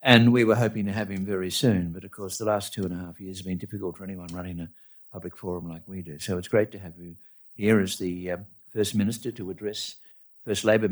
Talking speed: 260 wpm